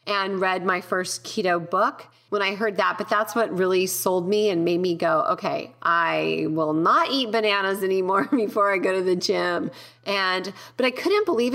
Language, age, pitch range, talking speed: English, 30-49, 185-230 Hz, 195 wpm